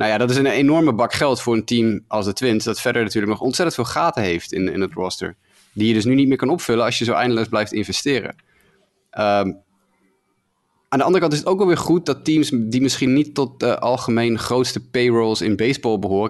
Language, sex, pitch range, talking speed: Dutch, male, 100-120 Hz, 240 wpm